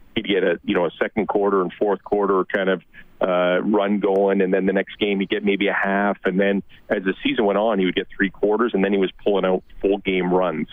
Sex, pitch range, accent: male, 95-105 Hz, American